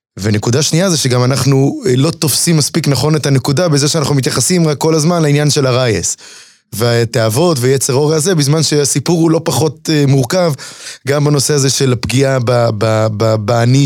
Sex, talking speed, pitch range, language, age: male, 155 wpm, 120-155 Hz, Hebrew, 20-39